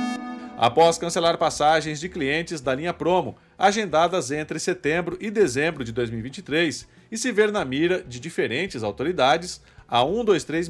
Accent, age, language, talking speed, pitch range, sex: Brazilian, 40-59, Portuguese, 140 wpm, 145-190 Hz, male